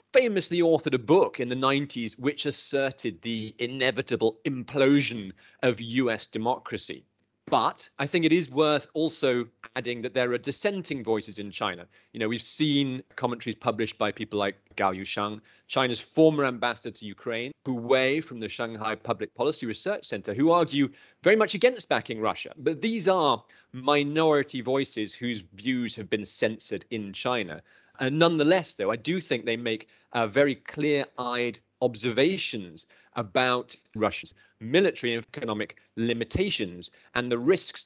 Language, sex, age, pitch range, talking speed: English, male, 30-49, 115-140 Hz, 150 wpm